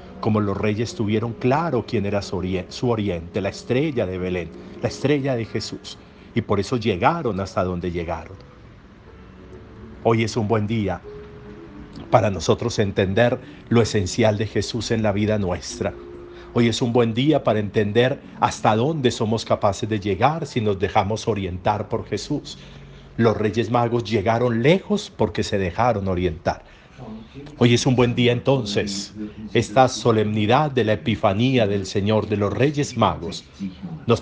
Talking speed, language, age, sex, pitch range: 150 wpm, Spanish, 50-69, male, 100-125 Hz